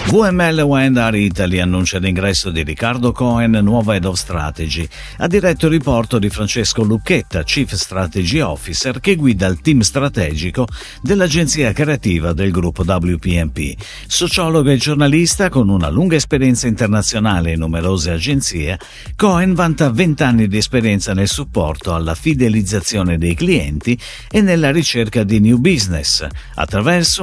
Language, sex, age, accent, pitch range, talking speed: Italian, male, 50-69, native, 90-140 Hz, 135 wpm